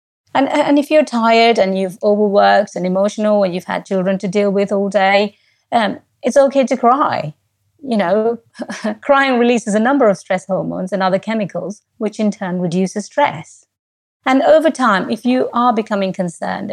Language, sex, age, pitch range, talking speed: English, female, 30-49, 180-210 Hz, 175 wpm